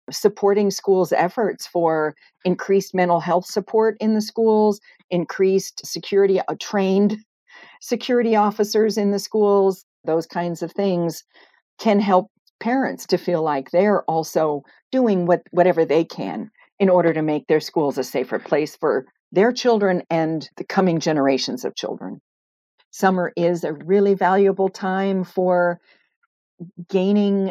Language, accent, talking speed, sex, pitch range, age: English, American, 135 wpm, female, 160-195 Hz, 50-69